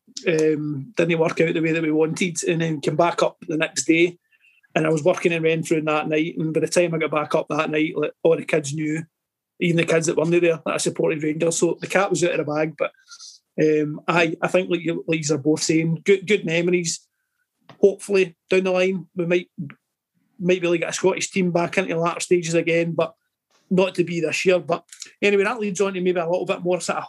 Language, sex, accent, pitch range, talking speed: English, male, British, 165-190 Hz, 245 wpm